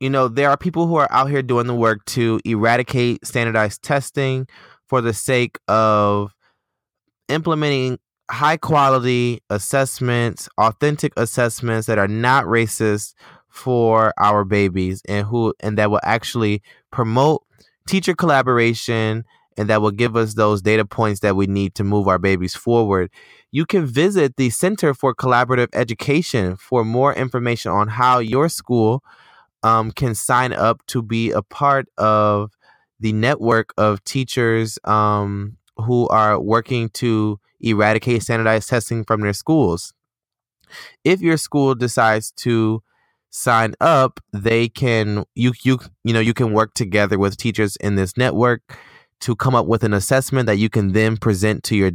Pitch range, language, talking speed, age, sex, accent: 105-125 Hz, English, 150 wpm, 20-39, male, American